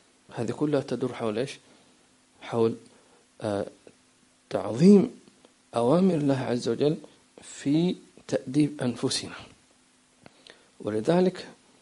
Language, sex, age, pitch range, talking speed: English, male, 50-69, 115-150 Hz, 75 wpm